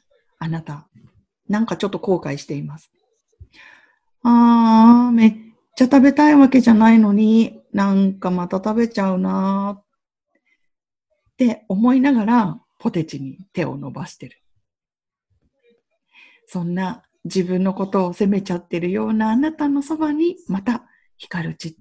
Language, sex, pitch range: Japanese, female, 165-240 Hz